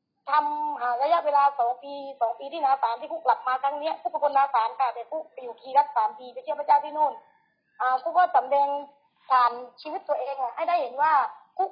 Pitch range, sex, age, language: 275-350 Hz, female, 20-39, Thai